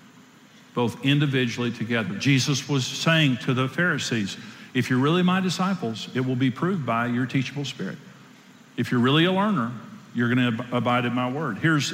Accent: American